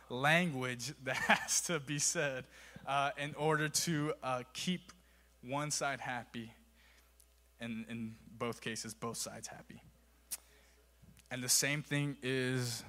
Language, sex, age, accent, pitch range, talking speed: English, male, 20-39, American, 125-160 Hz, 125 wpm